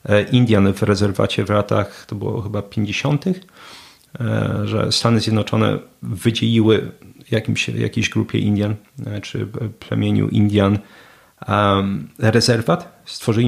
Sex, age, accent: male, 40-59, native